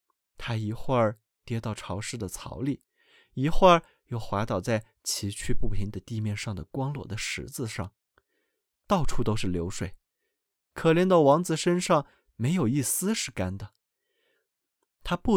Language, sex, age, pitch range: Chinese, male, 20-39, 110-180 Hz